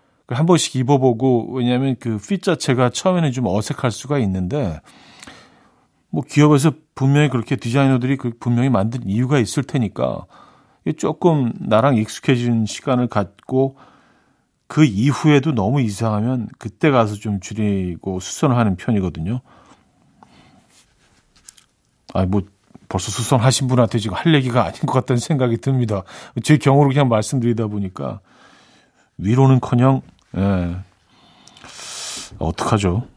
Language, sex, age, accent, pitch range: Korean, male, 50-69, native, 105-140 Hz